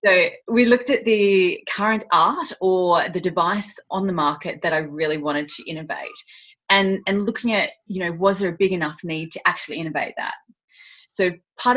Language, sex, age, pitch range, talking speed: English, female, 30-49, 155-195 Hz, 190 wpm